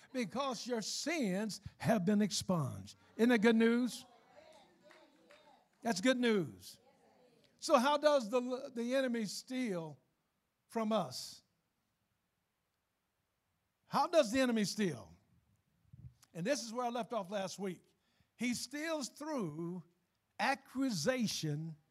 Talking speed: 110 wpm